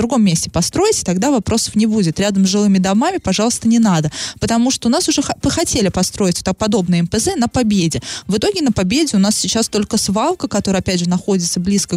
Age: 20-39